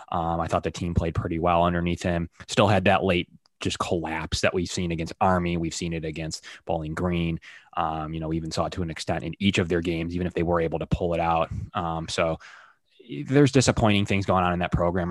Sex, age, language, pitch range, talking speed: male, 20-39, English, 85-95 Hz, 240 wpm